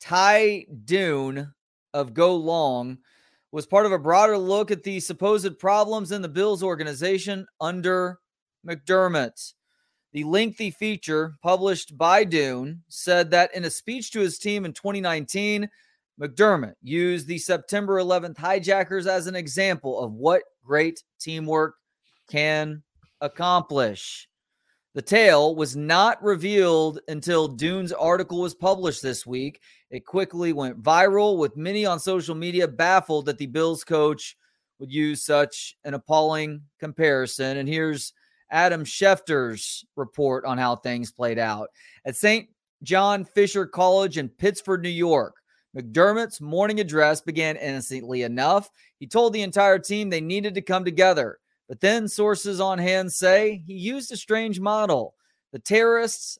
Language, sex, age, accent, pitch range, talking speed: English, male, 30-49, American, 150-195 Hz, 140 wpm